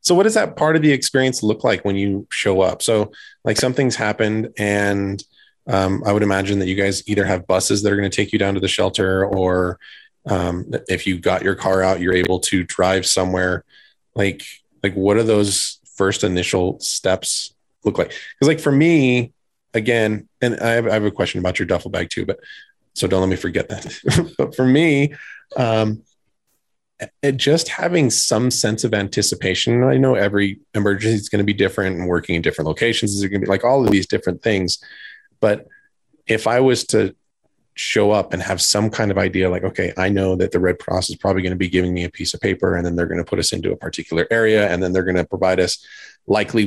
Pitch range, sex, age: 95-120 Hz, male, 20-39